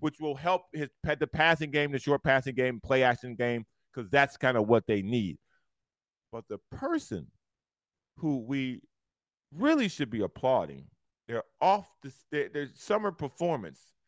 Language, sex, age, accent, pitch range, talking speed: English, male, 40-59, American, 125-185 Hz, 155 wpm